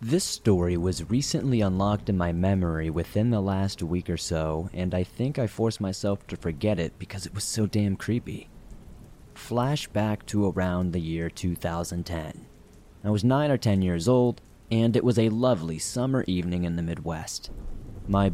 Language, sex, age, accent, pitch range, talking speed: English, male, 30-49, American, 85-105 Hz, 175 wpm